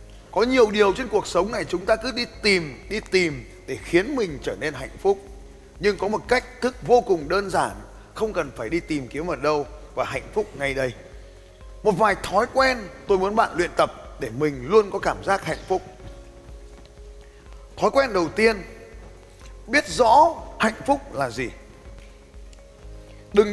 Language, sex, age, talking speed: Vietnamese, male, 20-39, 180 wpm